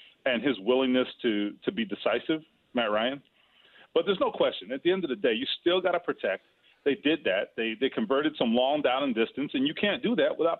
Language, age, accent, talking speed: English, 40-59, American, 230 wpm